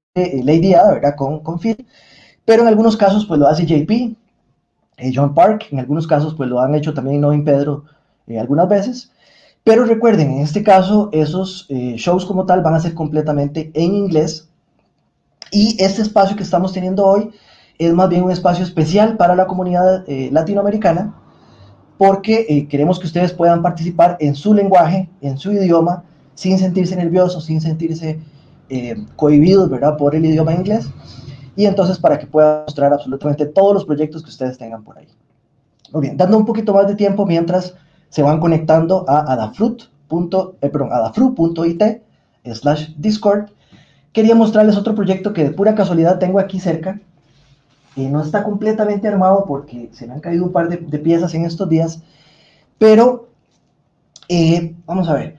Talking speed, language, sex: 170 wpm, English, male